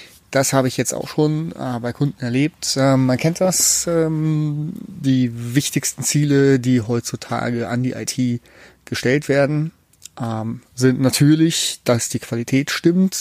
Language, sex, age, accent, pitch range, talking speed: German, male, 30-49, German, 120-145 Hz, 145 wpm